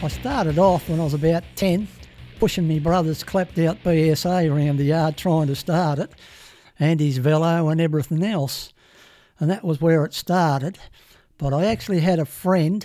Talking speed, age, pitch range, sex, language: 180 wpm, 60-79, 145-175 Hz, male, English